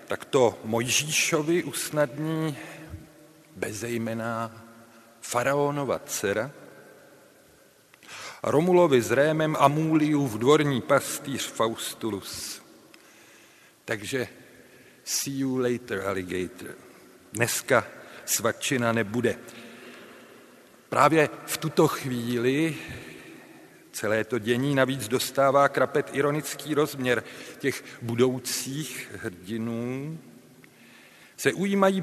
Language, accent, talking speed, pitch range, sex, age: Czech, native, 75 wpm, 120-155 Hz, male, 50-69